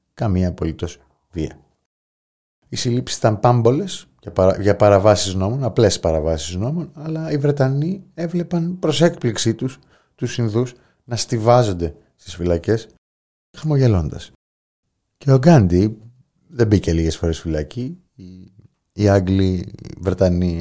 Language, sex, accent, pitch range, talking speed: Greek, male, native, 90-120 Hz, 120 wpm